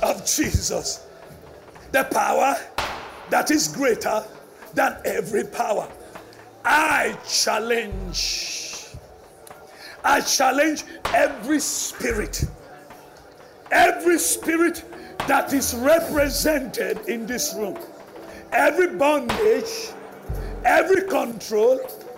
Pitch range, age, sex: 285-370 Hz, 50-69, male